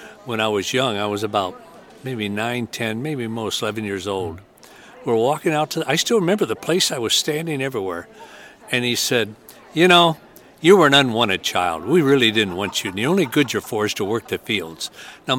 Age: 60-79